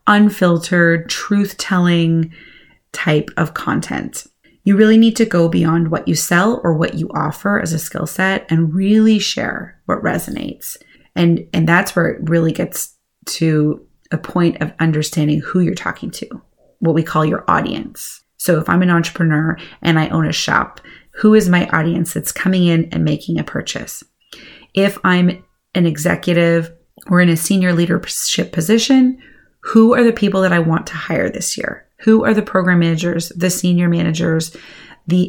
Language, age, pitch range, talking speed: English, 30-49, 165-190 Hz, 170 wpm